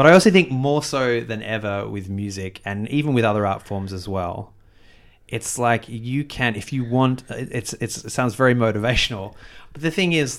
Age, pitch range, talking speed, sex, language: 30-49, 105-135 Hz, 200 wpm, male, English